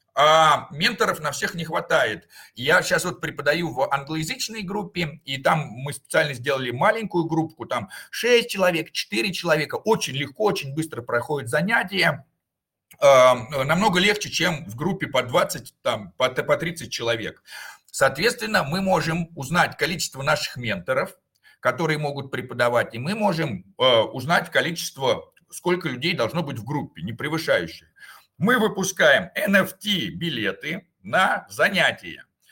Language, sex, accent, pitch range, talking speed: Russian, male, native, 145-195 Hz, 130 wpm